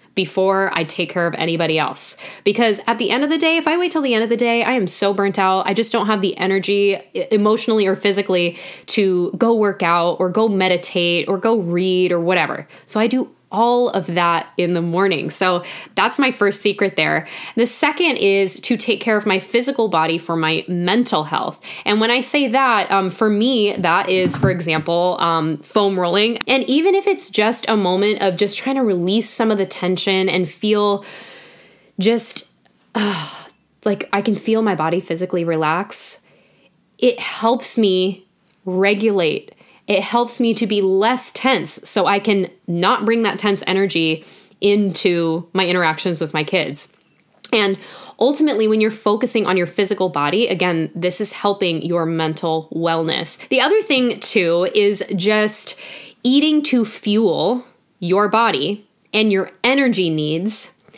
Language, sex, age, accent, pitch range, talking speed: English, female, 10-29, American, 180-230 Hz, 175 wpm